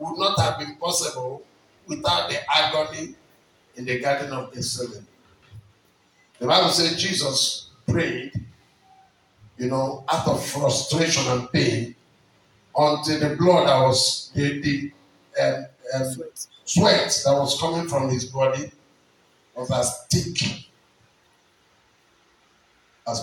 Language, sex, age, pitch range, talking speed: English, male, 50-69, 135-185 Hz, 110 wpm